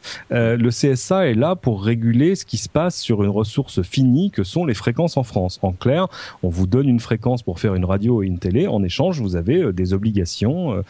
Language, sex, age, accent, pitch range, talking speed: French, male, 40-59, French, 95-130 Hz, 225 wpm